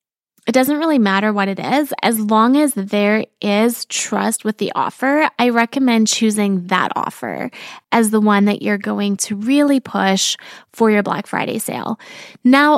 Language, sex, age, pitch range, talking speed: English, female, 20-39, 210-255 Hz, 170 wpm